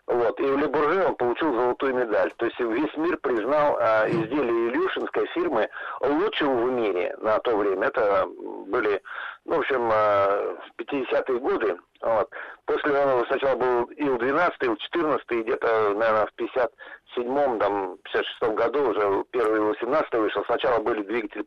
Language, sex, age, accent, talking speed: Russian, male, 50-69, native, 155 wpm